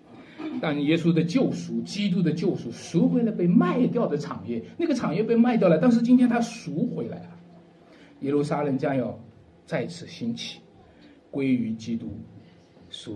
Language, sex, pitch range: Chinese, male, 125-180 Hz